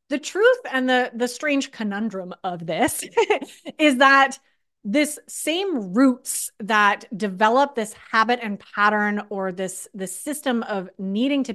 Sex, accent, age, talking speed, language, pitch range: female, American, 30-49, 140 wpm, English, 200-260 Hz